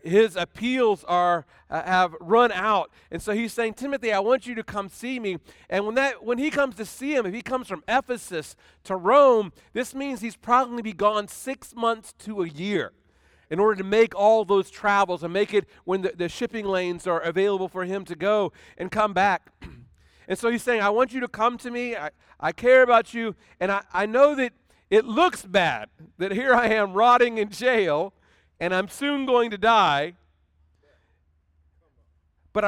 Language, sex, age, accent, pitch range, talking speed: English, male, 40-59, American, 140-230 Hz, 200 wpm